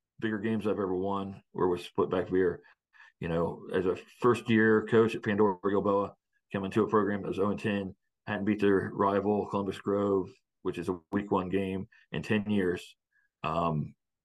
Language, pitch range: English, 95-105 Hz